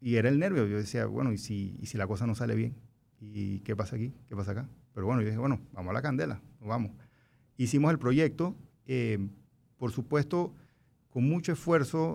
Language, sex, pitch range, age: Spanish, male, 120-150 Hz, 40-59